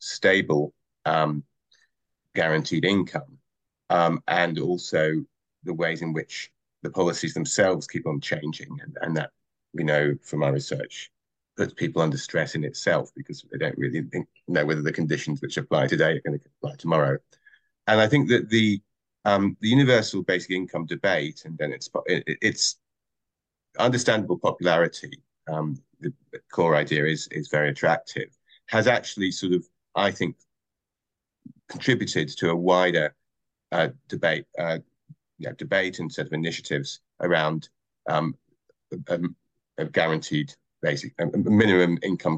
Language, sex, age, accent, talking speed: English, male, 30-49, British, 145 wpm